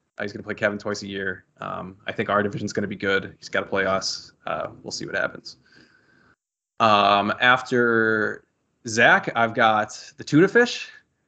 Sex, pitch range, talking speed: male, 105-125 Hz, 185 wpm